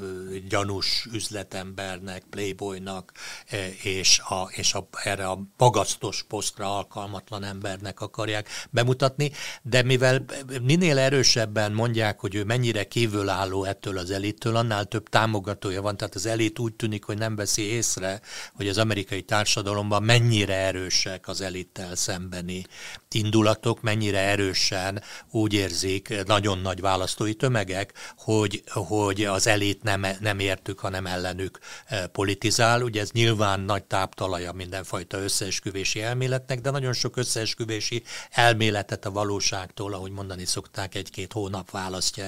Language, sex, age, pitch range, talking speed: Hungarian, male, 60-79, 95-110 Hz, 125 wpm